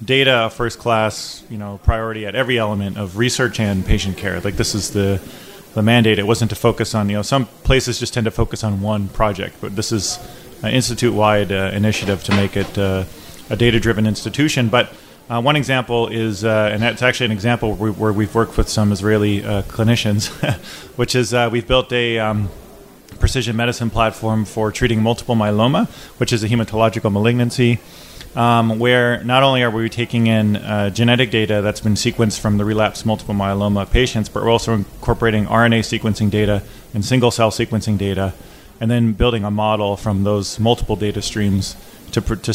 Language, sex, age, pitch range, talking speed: Hebrew, male, 30-49, 105-120 Hz, 185 wpm